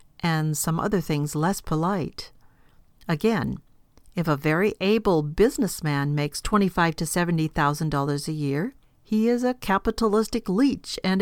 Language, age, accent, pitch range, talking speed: English, 50-69, American, 155-215 Hz, 145 wpm